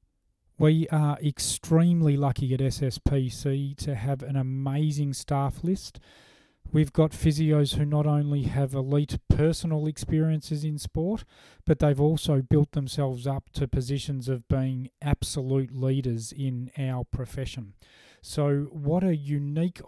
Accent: Australian